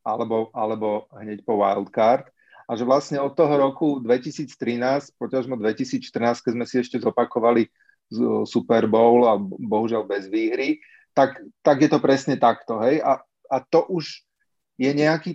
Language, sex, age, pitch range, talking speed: Slovak, male, 30-49, 115-135 Hz, 150 wpm